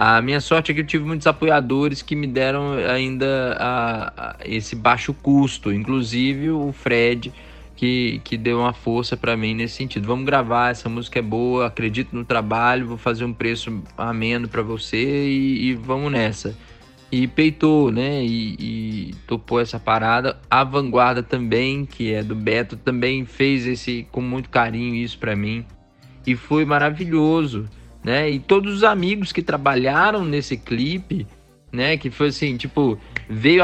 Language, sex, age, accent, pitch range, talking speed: Portuguese, male, 20-39, Brazilian, 120-150 Hz, 165 wpm